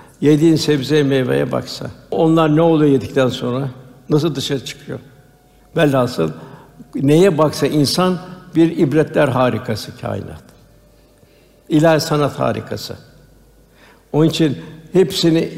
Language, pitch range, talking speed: Turkish, 135-160 Hz, 100 wpm